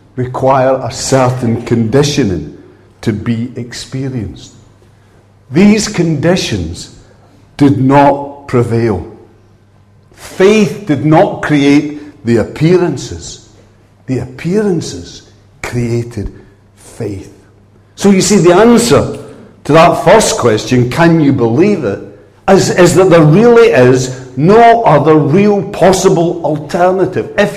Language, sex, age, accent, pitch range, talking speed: English, male, 60-79, British, 110-160 Hz, 100 wpm